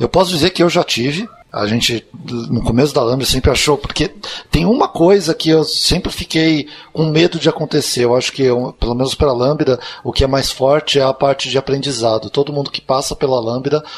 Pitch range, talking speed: 125-150 Hz, 220 wpm